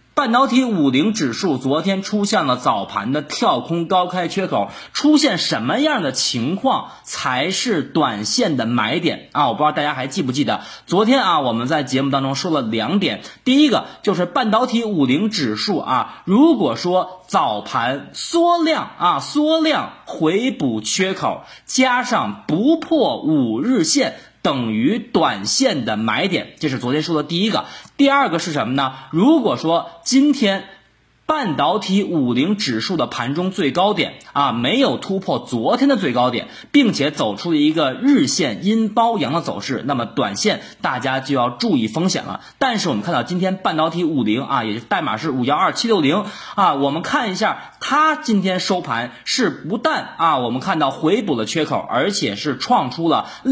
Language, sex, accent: Chinese, male, native